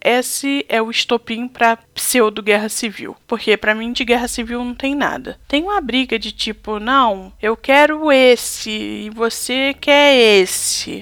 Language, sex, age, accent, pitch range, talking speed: Portuguese, female, 10-29, Brazilian, 205-270 Hz, 160 wpm